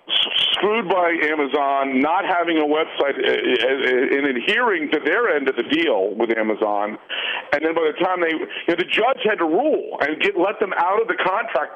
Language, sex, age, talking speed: English, male, 50-69, 195 wpm